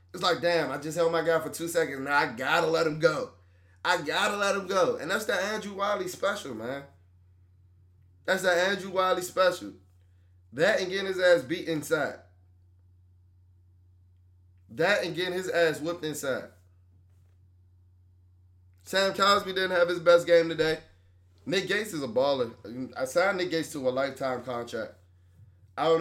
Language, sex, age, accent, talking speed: English, male, 20-39, American, 165 wpm